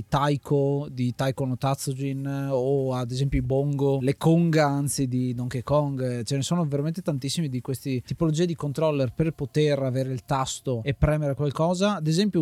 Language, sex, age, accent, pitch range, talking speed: Italian, male, 20-39, native, 130-155 Hz, 175 wpm